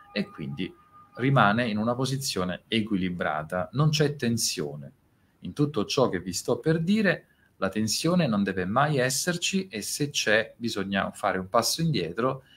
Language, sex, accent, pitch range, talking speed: Italian, male, native, 90-135 Hz, 155 wpm